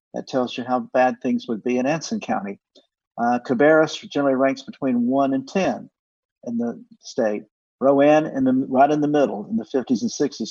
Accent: American